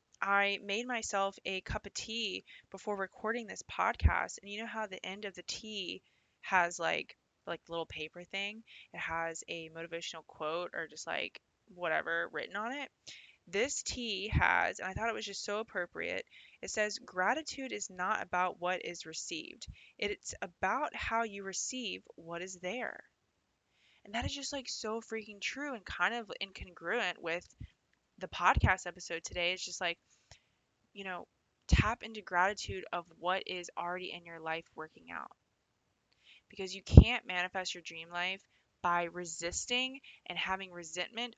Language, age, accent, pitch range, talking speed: English, 20-39, American, 175-215 Hz, 160 wpm